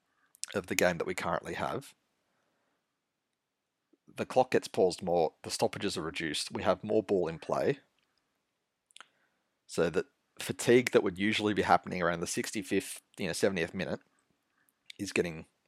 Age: 30-49